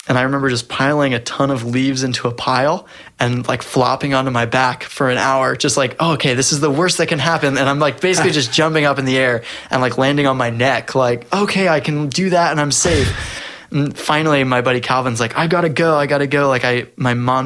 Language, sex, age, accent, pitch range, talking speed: English, male, 20-39, American, 120-140 Hz, 260 wpm